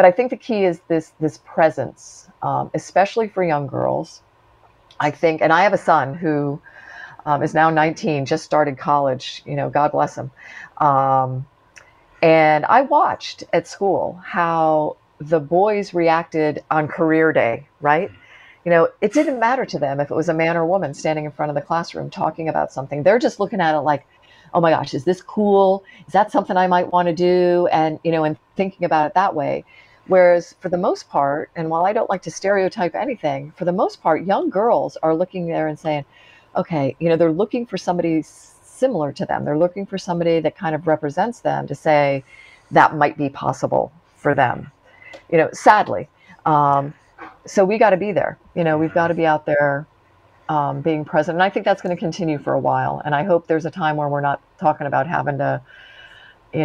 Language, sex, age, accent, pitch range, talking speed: English, female, 40-59, American, 150-185 Hz, 210 wpm